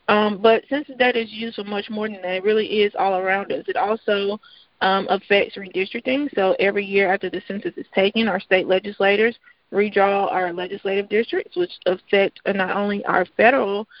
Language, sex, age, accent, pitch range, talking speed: English, female, 30-49, American, 195-220 Hz, 185 wpm